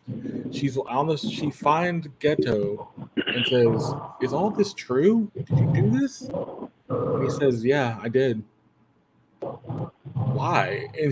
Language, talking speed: English, 130 wpm